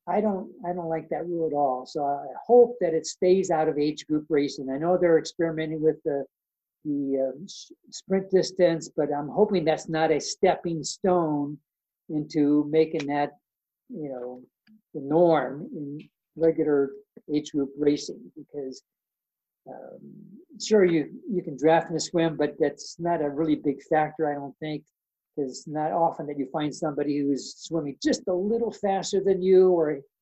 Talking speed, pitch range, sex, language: 175 wpm, 145-180 Hz, male, English